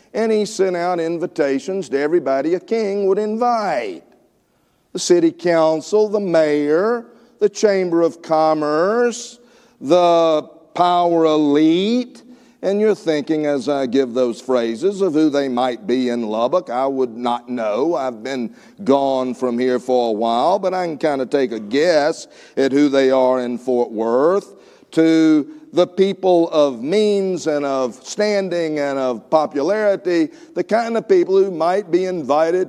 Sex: male